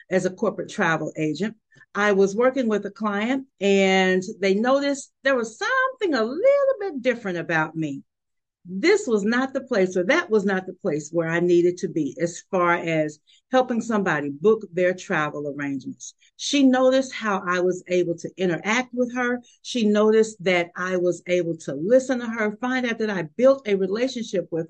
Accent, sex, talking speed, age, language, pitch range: American, female, 185 wpm, 50-69, English, 175-245 Hz